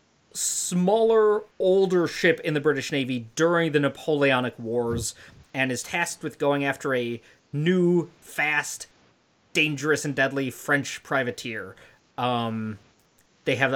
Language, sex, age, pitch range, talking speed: English, male, 30-49, 120-165 Hz, 120 wpm